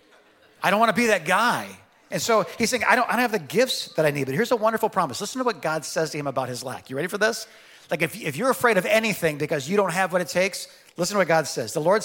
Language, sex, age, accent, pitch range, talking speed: English, male, 40-59, American, 150-215 Hz, 305 wpm